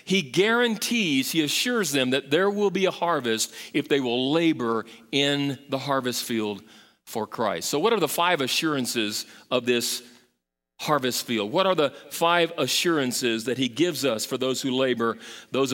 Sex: male